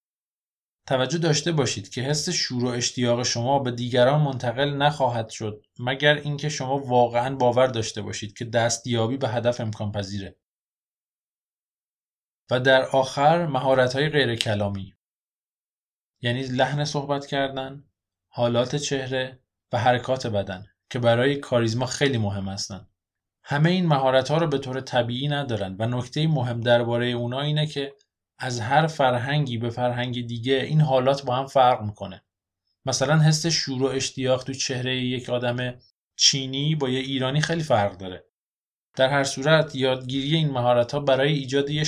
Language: Persian